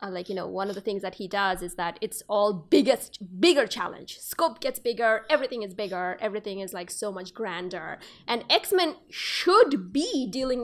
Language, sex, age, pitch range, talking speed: English, female, 20-39, 215-315 Hz, 195 wpm